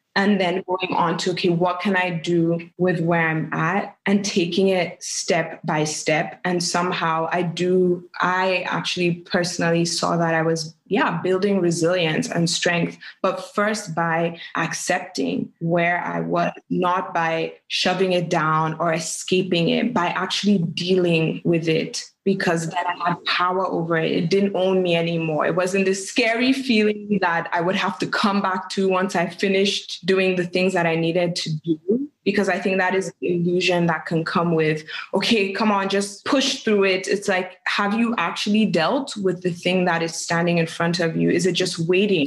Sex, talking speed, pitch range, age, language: female, 185 wpm, 170-195 Hz, 20-39, English